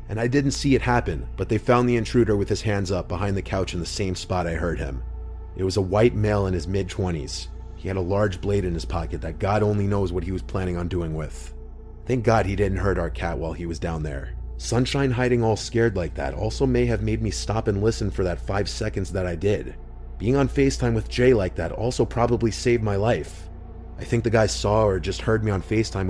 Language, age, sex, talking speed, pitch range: English, 30-49, male, 250 wpm, 85-115 Hz